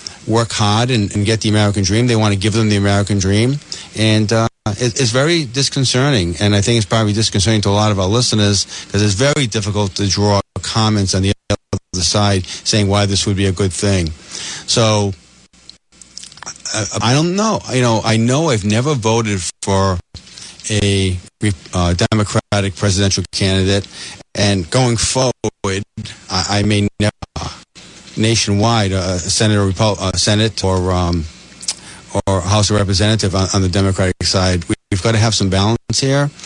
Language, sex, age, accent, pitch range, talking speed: English, male, 40-59, American, 95-110 Hz, 170 wpm